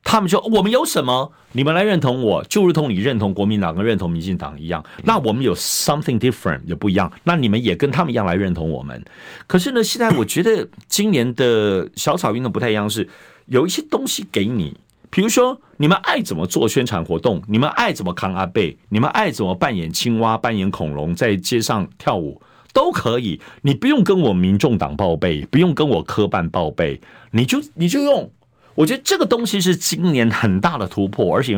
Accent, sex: native, male